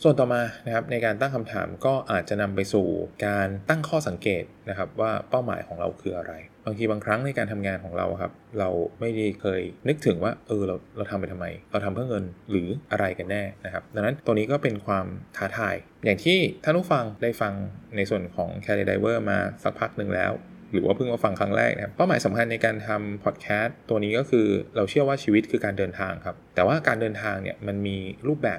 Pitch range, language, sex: 100-120 Hz, Thai, male